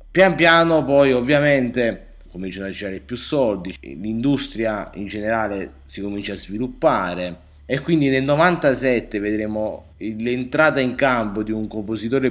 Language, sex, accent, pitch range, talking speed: Italian, male, native, 100-130 Hz, 130 wpm